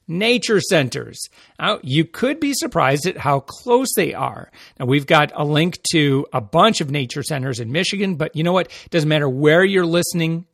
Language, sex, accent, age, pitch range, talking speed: English, male, American, 40-59, 140-175 Hz, 195 wpm